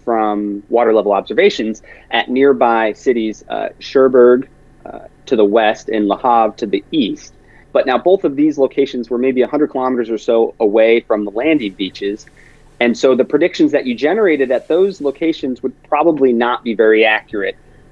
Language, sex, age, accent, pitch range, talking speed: English, male, 30-49, American, 120-155 Hz, 170 wpm